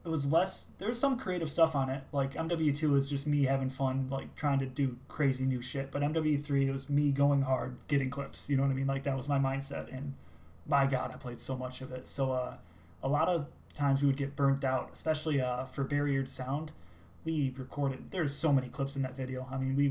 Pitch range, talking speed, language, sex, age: 130-145 Hz, 240 wpm, English, male, 20-39